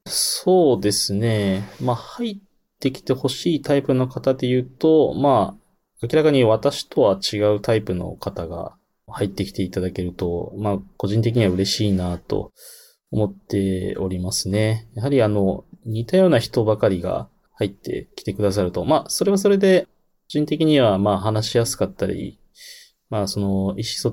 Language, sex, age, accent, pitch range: Japanese, male, 20-39, native, 100-135 Hz